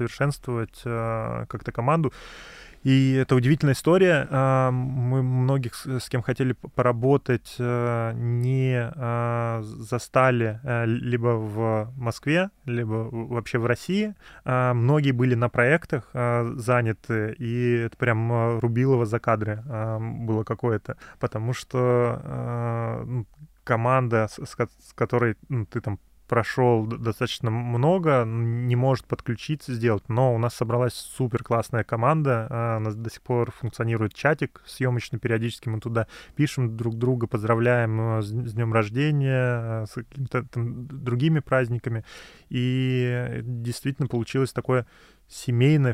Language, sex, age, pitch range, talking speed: Russian, male, 20-39, 115-130 Hz, 125 wpm